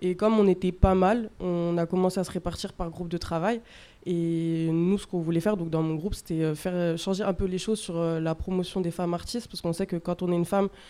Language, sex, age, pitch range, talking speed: French, female, 20-39, 175-200 Hz, 265 wpm